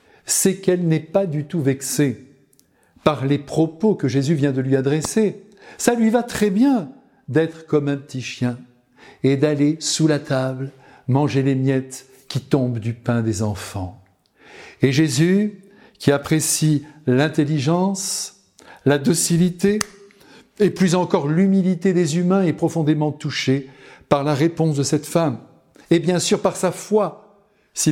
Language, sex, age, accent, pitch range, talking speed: French, male, 60-79, French, 130-170 Hz, 150 wpm